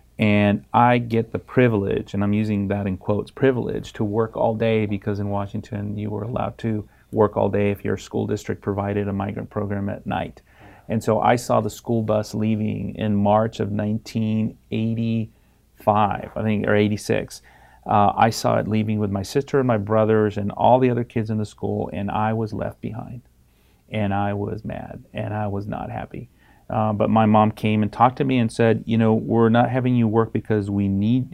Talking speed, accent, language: 205 wpm, American, English